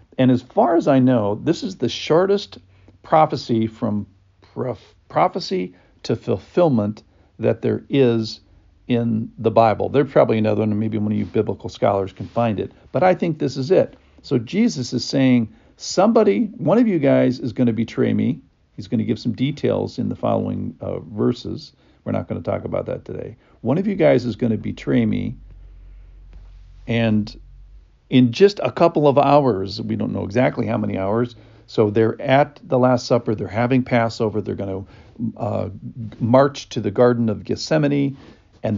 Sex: male